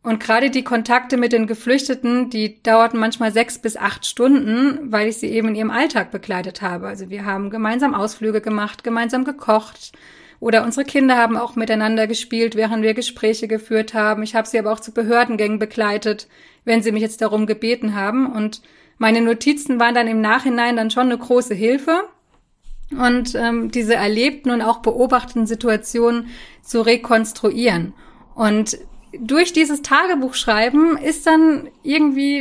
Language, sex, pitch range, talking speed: German, female, 220-260 Hz, 160 wpm